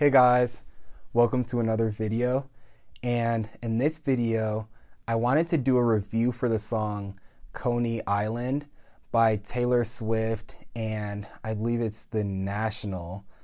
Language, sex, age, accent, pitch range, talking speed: English, male, 20-39, American, 105-125 Hz, 135 wpm